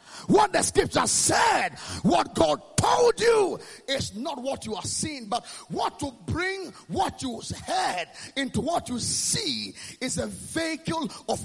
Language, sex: English, male